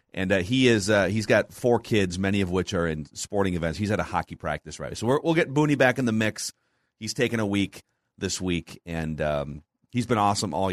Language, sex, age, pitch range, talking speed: English, male, 30-49, 95-130 Hz, 240 wpm